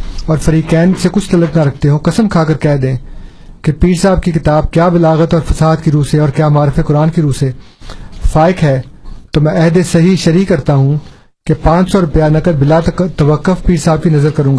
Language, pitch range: Urdu, 150-170 Hz